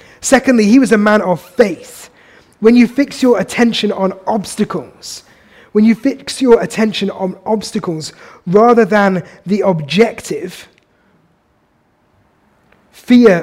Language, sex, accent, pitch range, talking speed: English, male, British, 195-240 Hz, 115 wpm